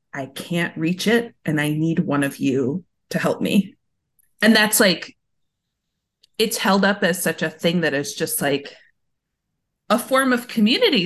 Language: English